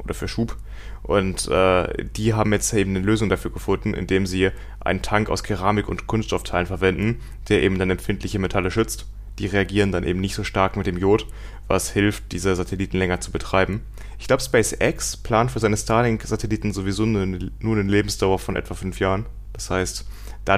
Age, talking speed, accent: 30-49, 185 wpm, German